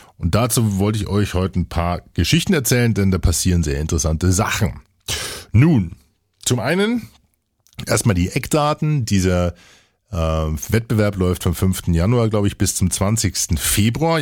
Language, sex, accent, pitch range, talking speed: German, male, German, 90-120 Hz, 150 wpm